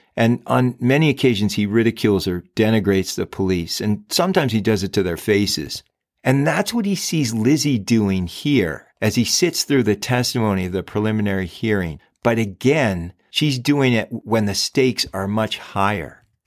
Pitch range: 100-135 Hz